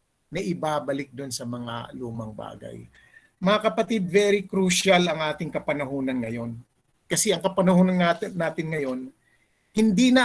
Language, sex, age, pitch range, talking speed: Filipino, male, 50-69, 155-225 Hz, 130 wpm